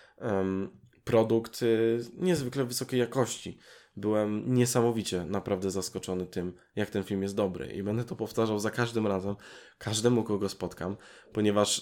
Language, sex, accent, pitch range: Polish, male, native, 95-115 Hz